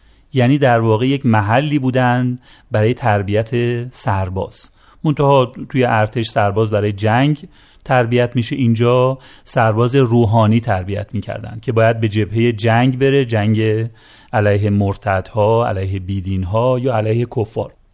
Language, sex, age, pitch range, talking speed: Persian, male, 40-59, 110-135 Hz, 120 wpm